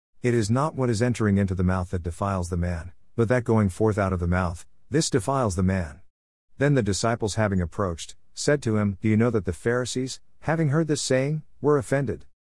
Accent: American